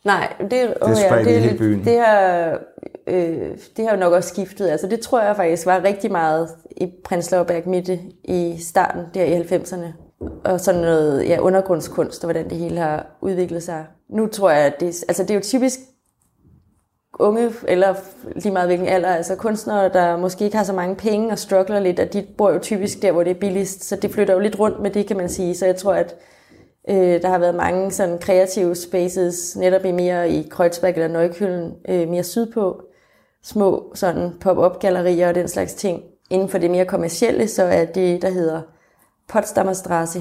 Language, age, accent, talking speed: Danish, 20-39, native, 195 wpm